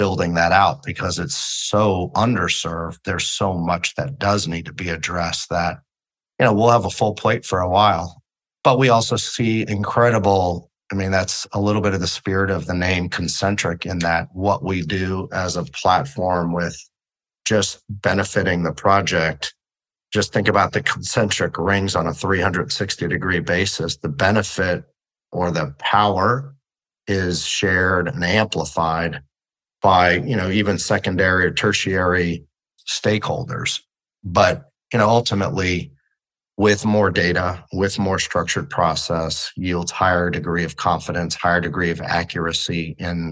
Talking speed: 150 wpm